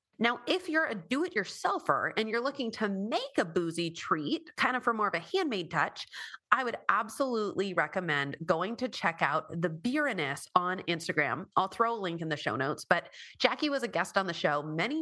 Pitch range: 160-235 Hz